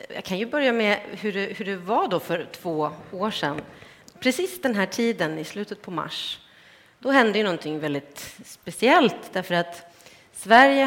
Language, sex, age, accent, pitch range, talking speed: English, female, 30-49, Swedish, 165-230 Hz, 175 wpm